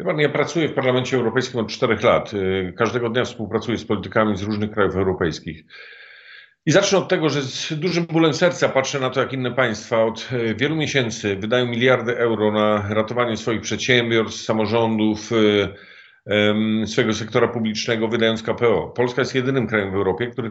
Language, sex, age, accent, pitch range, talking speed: Polish, male, 50-69, native, 115-155 Hz, 160 wpm